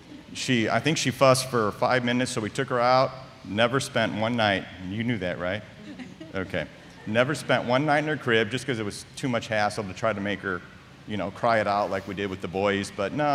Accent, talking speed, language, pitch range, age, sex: American, 245 wpm, English, 100-125 Hz, 40-59, male